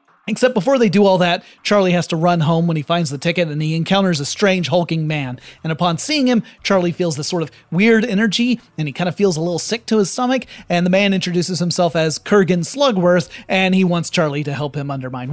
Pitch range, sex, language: 155-215 Hz, male, English